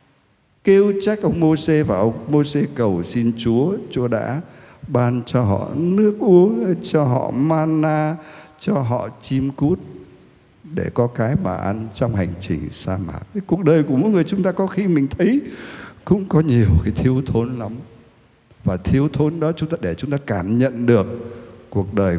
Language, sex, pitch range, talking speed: Vietnamese, male, 115-170 Hz, 180 wpm